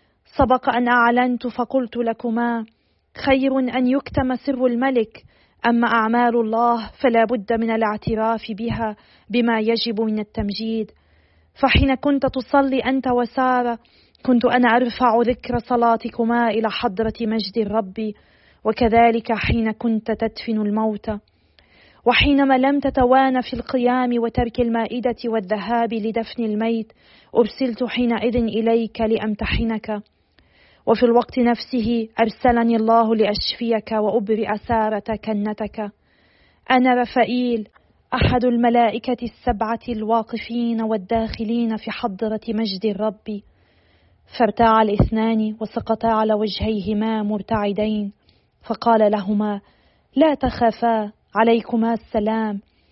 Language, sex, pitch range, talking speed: Arabic, female, 220-245 Hz, 100 wpm